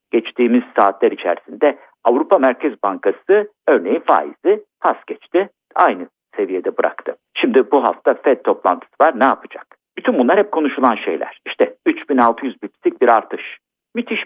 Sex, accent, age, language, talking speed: male, native, 50-69, Turkish, 135 wpm